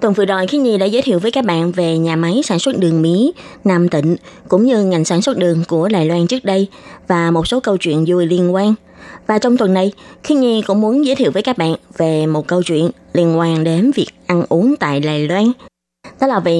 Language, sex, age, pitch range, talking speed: Vietnamese, female, 20-39, 170-225 Hz, 245 wpm